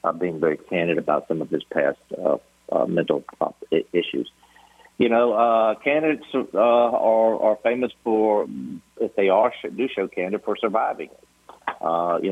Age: 50-69